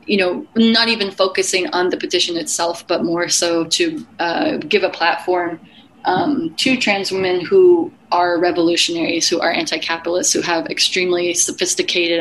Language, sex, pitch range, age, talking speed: English, female, 170-245 Hz, 20-39, 150 wpm